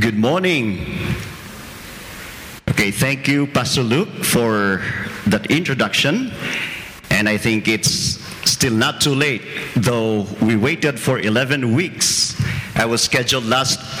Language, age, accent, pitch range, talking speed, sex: English, 50-69, Filipino, 110-130 Hz, 120 wpm, male